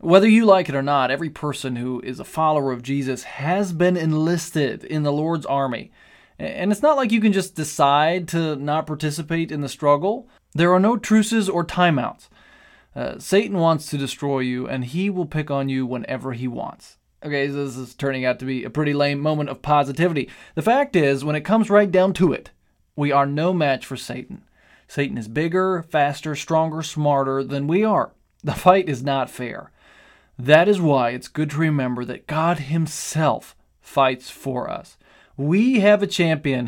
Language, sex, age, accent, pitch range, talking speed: English, male, 20-39, American, 135-170 Hz, 190 wpm